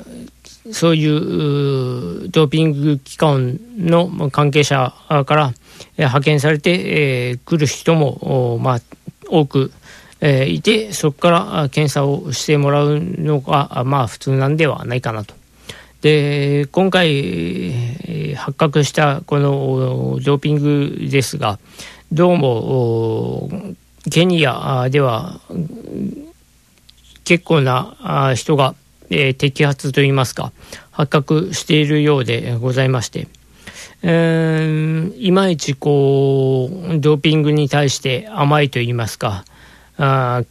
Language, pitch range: Japanese, 130-155 Hz